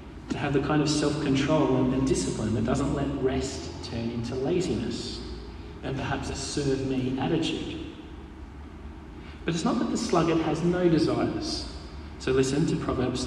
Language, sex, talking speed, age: English, male, 150 wpm, 30-49